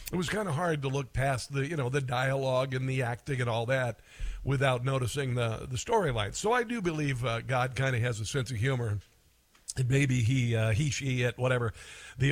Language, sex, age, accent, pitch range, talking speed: English, male, 50-69, American, 130-155 Hz, 225 wpm